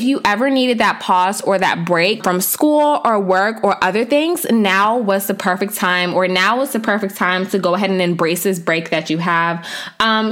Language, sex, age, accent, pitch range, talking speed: English, female, 20-39, American, 185-235 Hz, 220 wpm